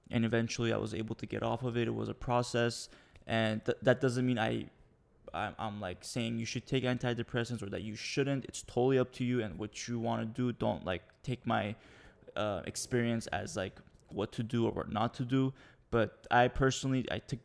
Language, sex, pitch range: English, male, 110-125 Hz